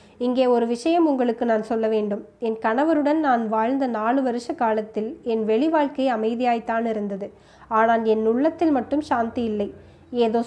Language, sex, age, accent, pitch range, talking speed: Tamil, female, 20-39, native, 220-270 Hz, 150 wpm